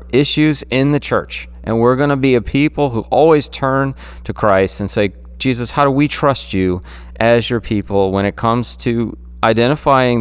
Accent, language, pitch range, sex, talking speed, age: American, English, 95-125 Hz, male, 190 wpm, 30-49